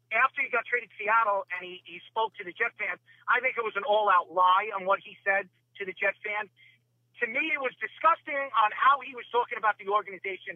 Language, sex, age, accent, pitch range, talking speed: English, male, 50-69, American, 185-235 Hz, 245 wpm